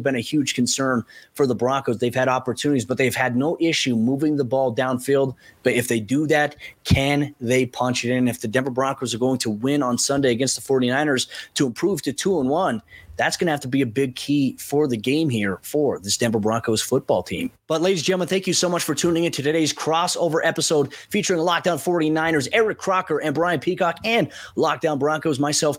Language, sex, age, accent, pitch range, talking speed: English, male, 20-39, American, 130-160 Hz, 220 wpm